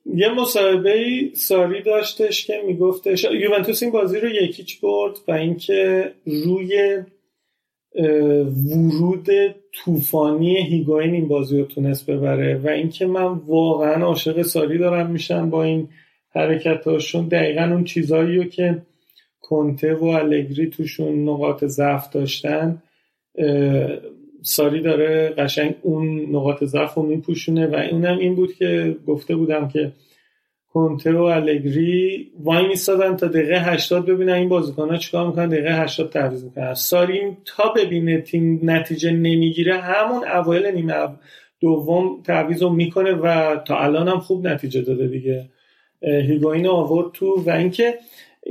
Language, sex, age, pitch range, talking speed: Persian, male, 40-59, 155-185 Hz, 130 wpm